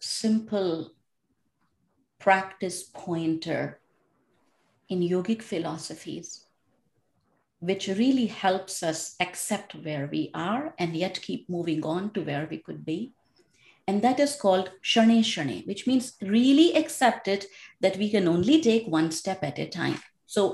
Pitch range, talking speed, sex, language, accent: 185-240 Hz, 130 wpm, female, English, Indian